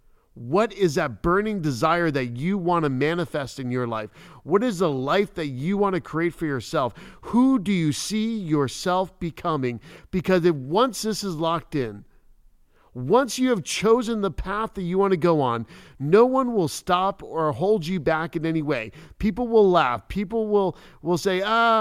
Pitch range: 150-200 Hz